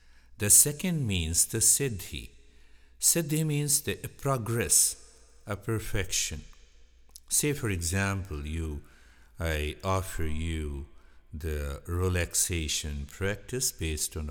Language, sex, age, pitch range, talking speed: Hindi, male, 60-79, 65-95 Hz, 95 wpm